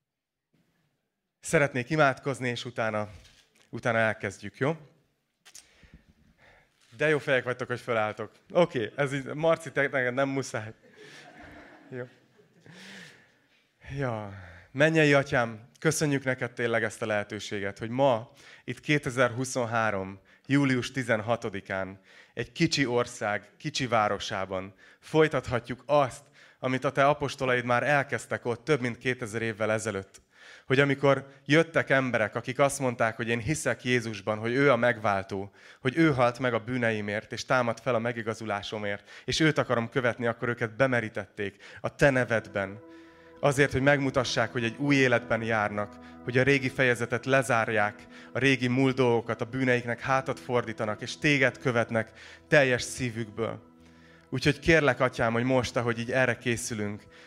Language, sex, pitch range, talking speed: Hungarian, male, 110-135 Hz, 135 wpm